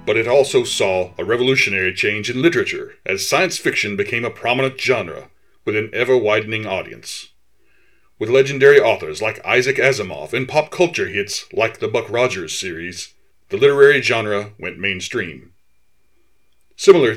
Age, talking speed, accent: 40-59, 145 wpm, American